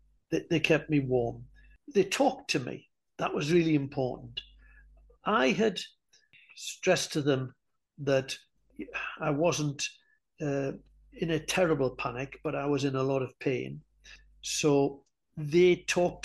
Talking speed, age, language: 135 wpm, 60-79, English